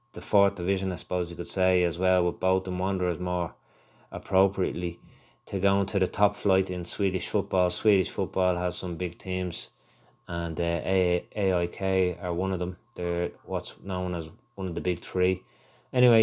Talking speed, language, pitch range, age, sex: 180 wpm, English, 90-105 Hz, 30-49, male